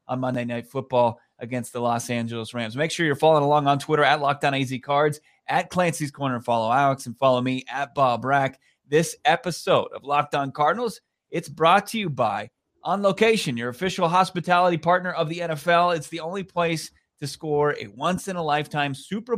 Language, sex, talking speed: English, male, 180 wpm